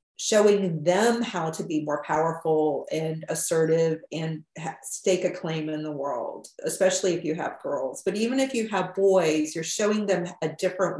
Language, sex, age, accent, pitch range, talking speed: English, female, 40-59, American, 160-195 Hz, 175 wpm